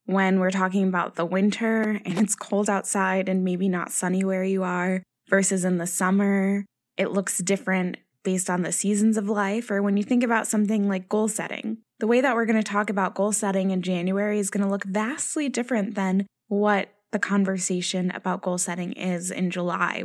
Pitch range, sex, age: 185-215 Hz, female, 20-39